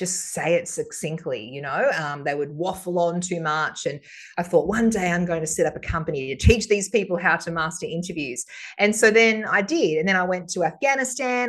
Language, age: English, 30-49